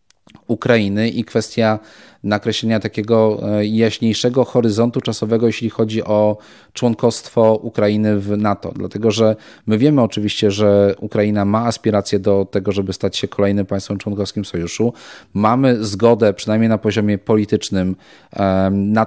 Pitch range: 105-115 Hz